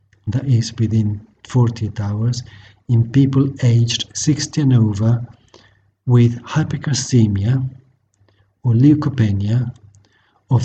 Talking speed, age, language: 90 wpm, 50-69, English